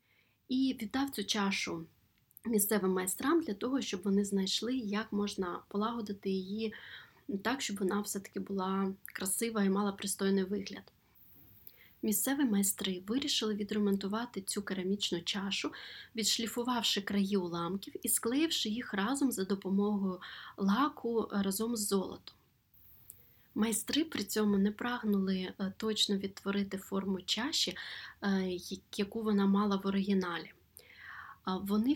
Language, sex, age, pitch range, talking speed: Ukrainian, female, 20-39, 195-225 Hz, 115 wpm